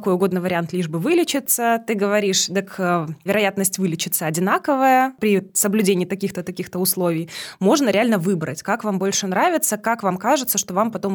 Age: 20-39